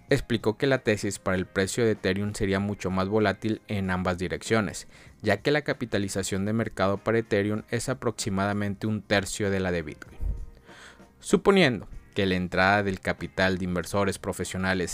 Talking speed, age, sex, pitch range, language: 165 wpm, 30-49, male, 95-120 Hz, Spanish